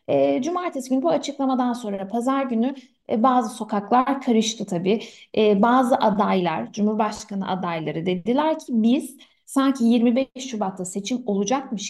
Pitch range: 205-265 Hz